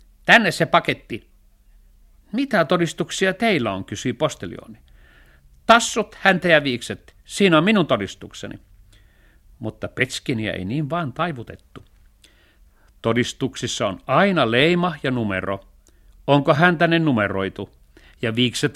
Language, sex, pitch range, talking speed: Finnish, male, 100-170 Hz, 110 wpm